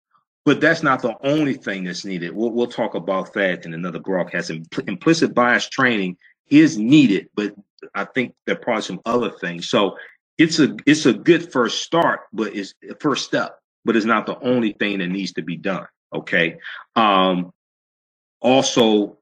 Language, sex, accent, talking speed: English, male, American, 180 wpm